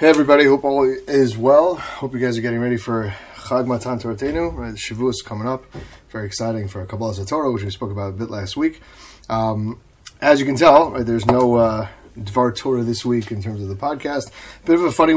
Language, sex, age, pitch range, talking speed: English, male, 30-49, 105-130 Hz, 220 wpm